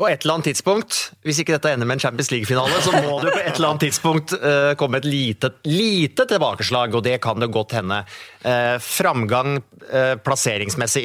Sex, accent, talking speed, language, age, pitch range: male, Norwegian, 155 wpm, English, 30-49, 120-165 Hz